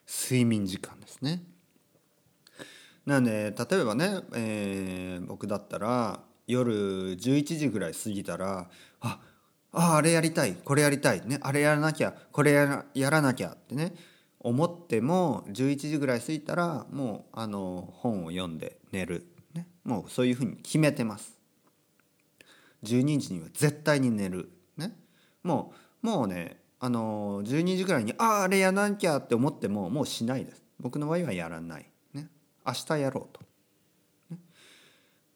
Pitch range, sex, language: 100-155 Hz, male, Japanese